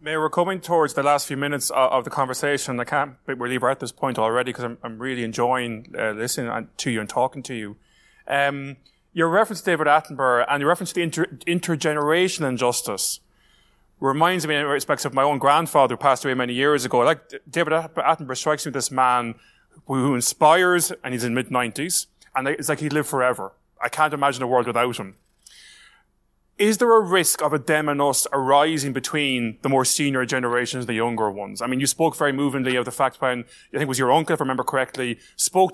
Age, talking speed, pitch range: 20-39, 215 wpm, 125-155 Hz